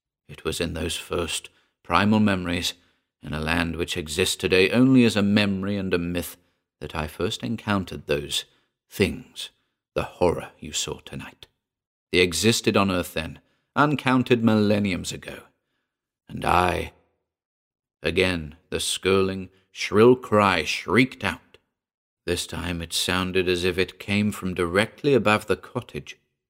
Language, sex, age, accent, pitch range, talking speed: English, male, 50-69, British, 85-100 Hz, 135 wpm